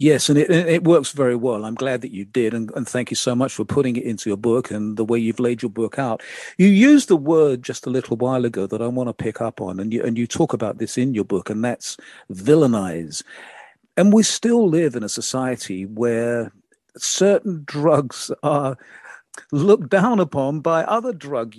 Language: English